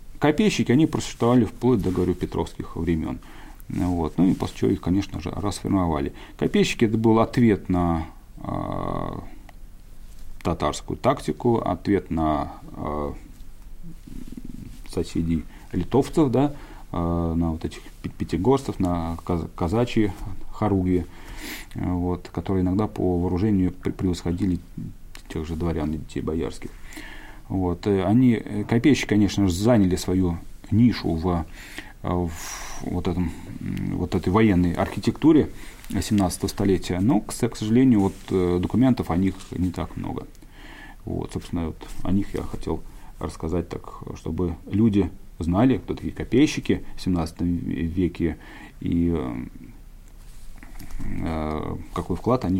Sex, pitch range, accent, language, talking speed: male, 85-105 Hz, native, Russian, 120 wpm